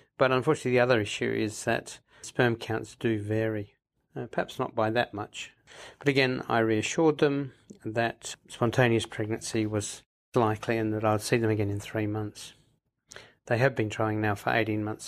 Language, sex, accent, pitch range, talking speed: English, male, British, 110-130 Hz, 180 wpm